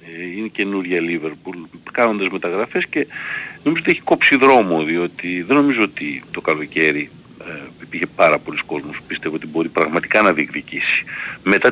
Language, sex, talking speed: Greek, male, 150 wpm